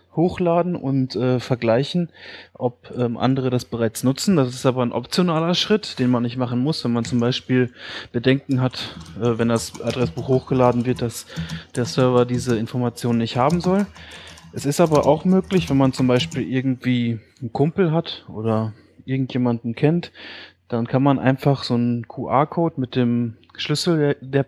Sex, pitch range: male, 120-140 Hz